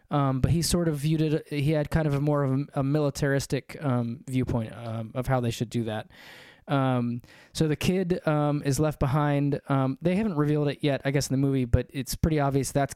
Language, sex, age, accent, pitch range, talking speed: English, male, 20-39, American, 130-155 Hz, 230 wpm